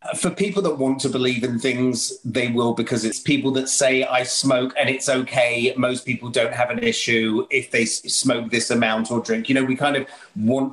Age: 30-49